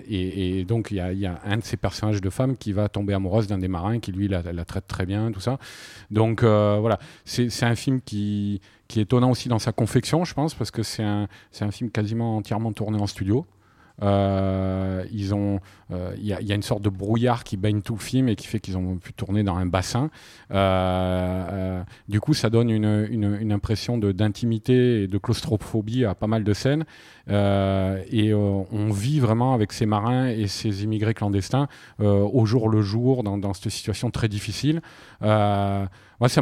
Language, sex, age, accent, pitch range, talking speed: French, male, 40-59, French, 100-115 Hz, 215 wpm